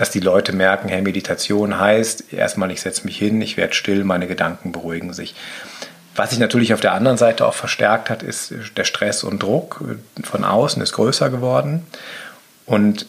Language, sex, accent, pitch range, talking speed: German, male, German, 100-120 Hz, 185 wpm